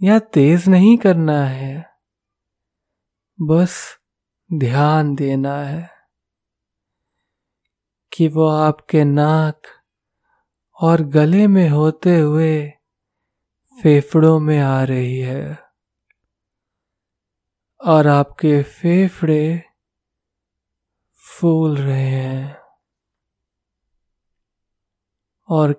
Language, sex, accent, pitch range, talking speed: Hindi, male, native, 135-160 Hz, 65 wpm